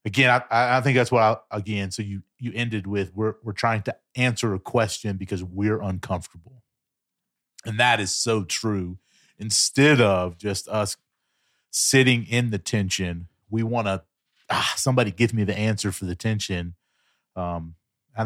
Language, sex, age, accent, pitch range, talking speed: English, male, 30-49, American, 95-115 Hz, 160 wpm